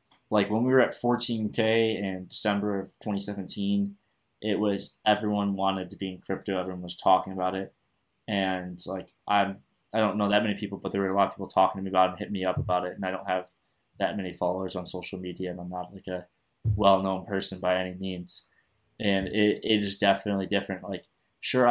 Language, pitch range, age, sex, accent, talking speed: English, 95-105 Hz, 20-39, male, American, 215 wpm